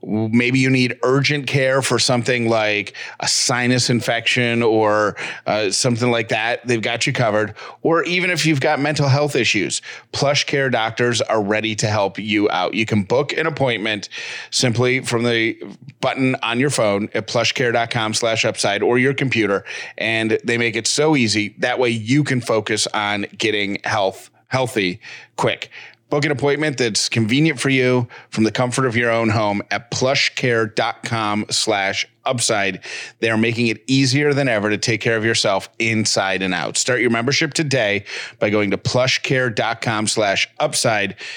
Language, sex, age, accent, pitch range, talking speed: English, male, 30-49, American, 110-135 Hz, 165 wpm